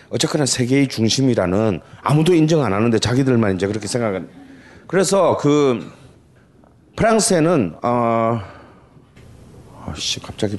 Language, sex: Korean, male